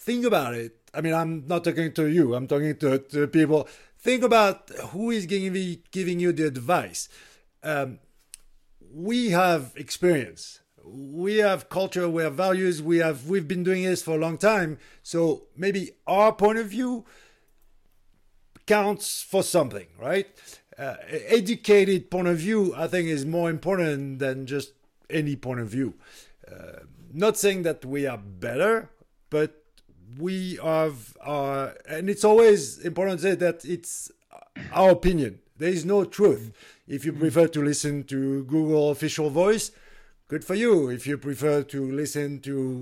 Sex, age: male, 50-69